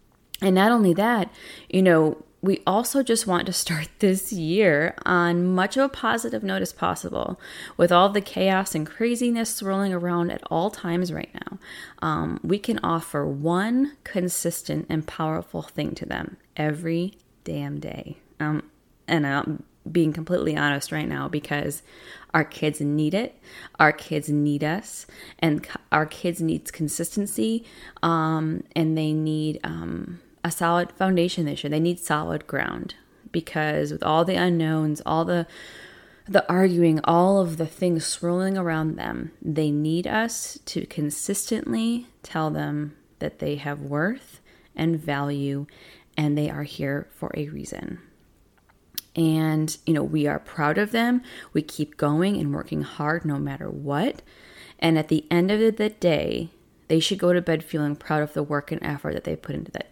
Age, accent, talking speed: 20-39, American, 160 wpm